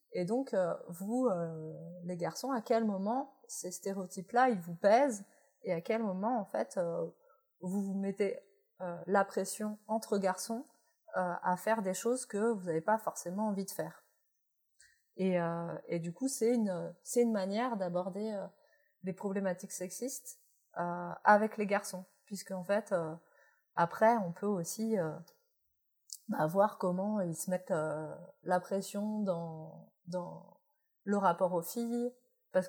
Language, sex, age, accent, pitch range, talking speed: French, female, 30-49, French, 175-230 Hz, 160 wpm